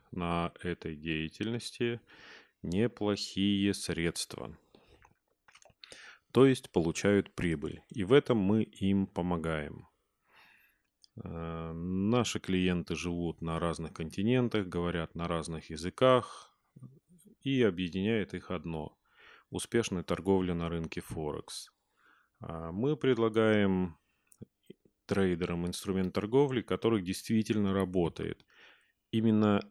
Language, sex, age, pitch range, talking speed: Russian, male, 30-49, 85-105 Hz, 85 wpm